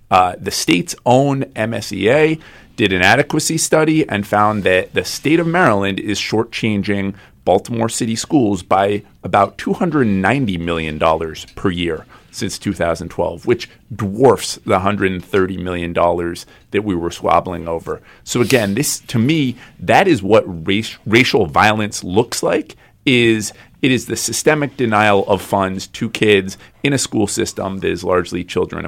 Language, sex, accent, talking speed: English, male, American, 145 wpm